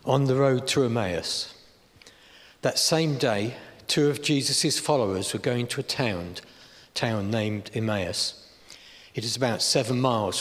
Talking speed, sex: 145 wpm, male